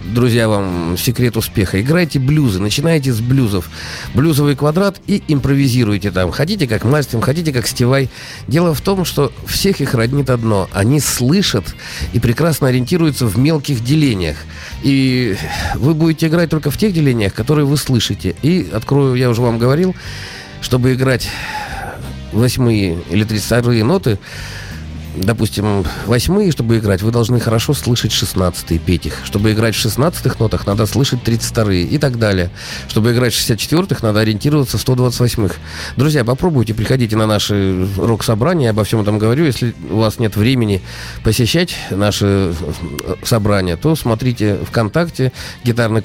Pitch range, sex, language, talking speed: 100-135 Hz, male, Russian, 150 wpm